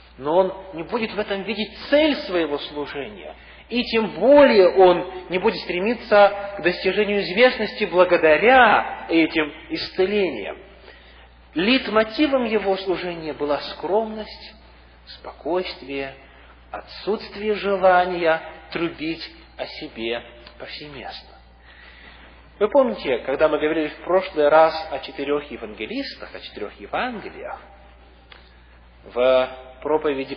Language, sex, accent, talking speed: Russian, male, native, 100 wpm